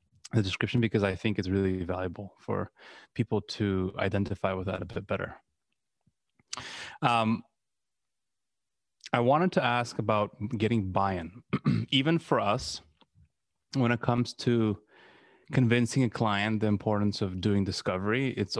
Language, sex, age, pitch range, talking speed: English, male, 20-39, 95-115 Hz, 130 wpm